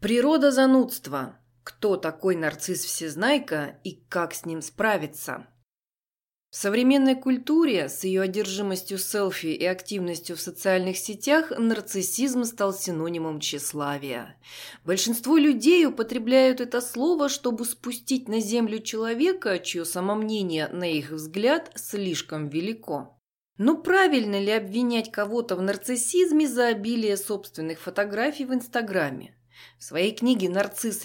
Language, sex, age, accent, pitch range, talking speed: Russian, female, 20-39, native, 175-240 Hz, 115 wpm